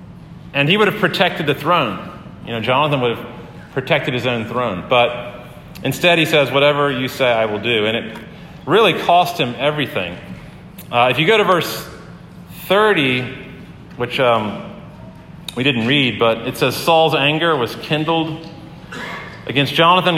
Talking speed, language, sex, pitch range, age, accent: 160 wpm, English, male, 125-165 Hz, 40-59, American